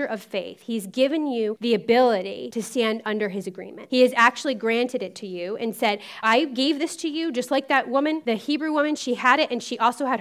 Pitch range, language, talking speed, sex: 215-270 Hz, English, 235 wpm, female